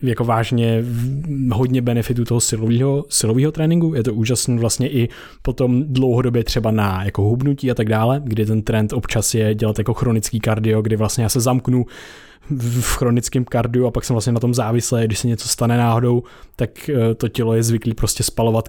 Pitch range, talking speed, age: 115-135 Hz, 185 wpm, 20-39